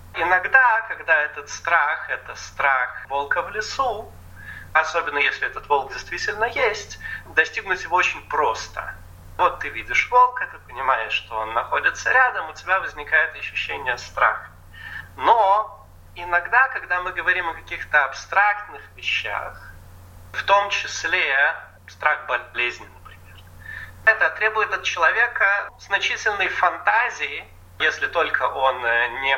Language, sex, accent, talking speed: Russian, male, native, 120 wpm